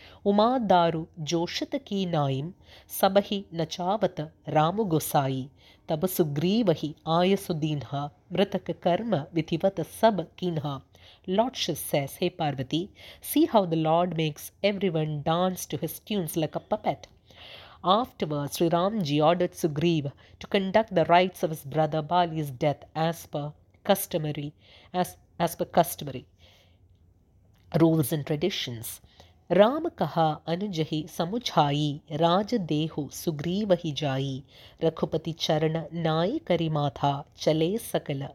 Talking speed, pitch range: 95 wpm, 150-180 Hz